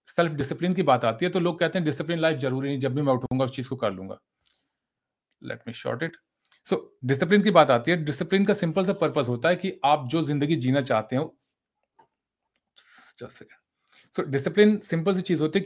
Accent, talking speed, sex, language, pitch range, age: native, 130 wpm, male, Hindi, 130-170 Hz, 40-59